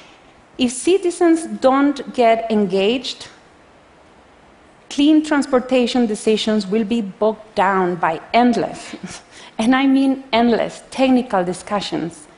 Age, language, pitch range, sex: 30-49, Chinese, 200-255 Hz, female